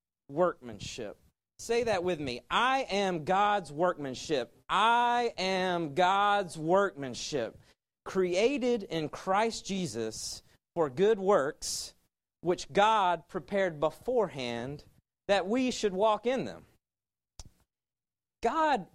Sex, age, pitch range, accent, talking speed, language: male, 40-59, 160-215 Hz, American, 100 wpm, English